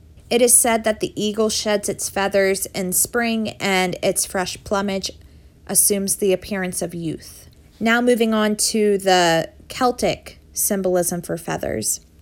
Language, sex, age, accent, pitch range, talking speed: English, female, 20-39, American, 180-215 Hz, 140 wpm